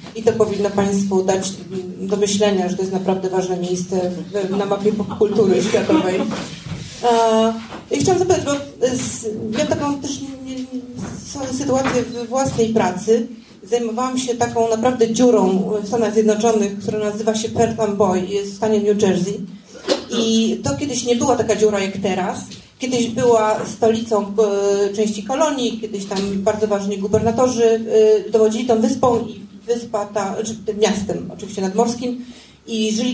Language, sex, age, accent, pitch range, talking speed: Polish, female, 30-49, native, 205-235 Hz, 140 wpm